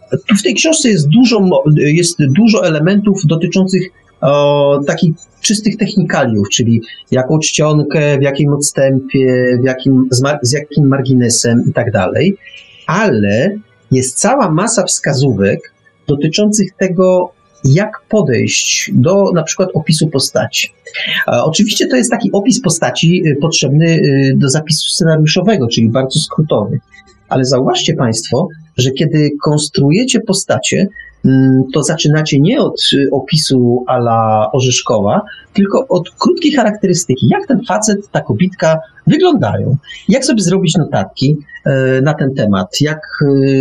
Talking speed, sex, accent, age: 120 wpm, male, native, 40-59